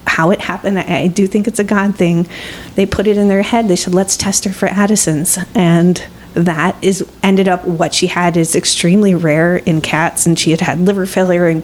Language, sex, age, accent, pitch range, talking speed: English, female, 30-49, American, 175-200 Hz, 225 wpm